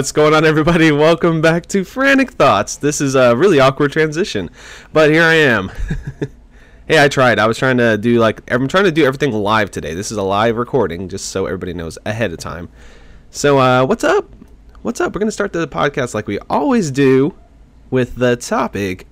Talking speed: 205 wpm